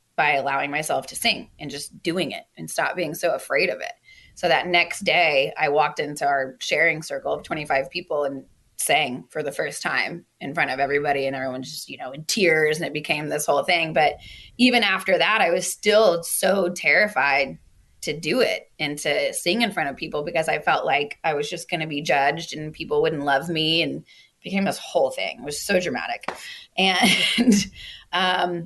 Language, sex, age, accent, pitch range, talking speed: English, female, 20-39, American, 150-190 Hz, 205 wpm